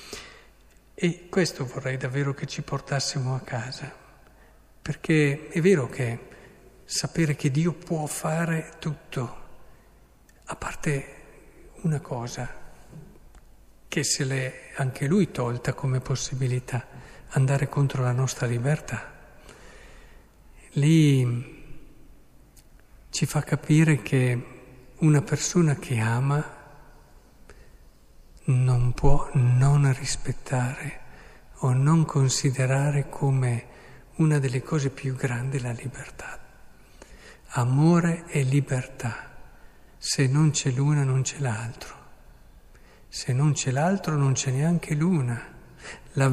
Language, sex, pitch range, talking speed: Italian, male, 125-150 Hz, 100 wpm